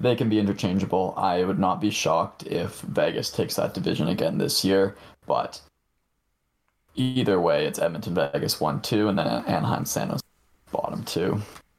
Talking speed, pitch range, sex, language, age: 150 wpm, 100-125 Hz, male, English, 20-39